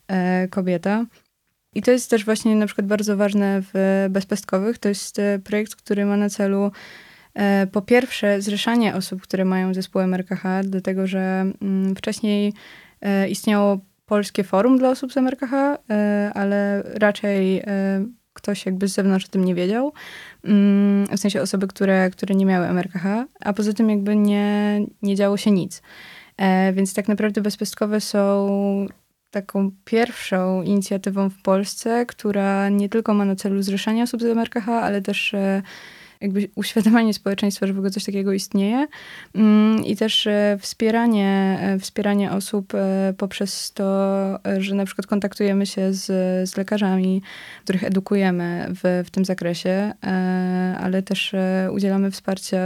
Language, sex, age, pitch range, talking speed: Polish, female, 20-39, 190-210 Hz, 135 wpm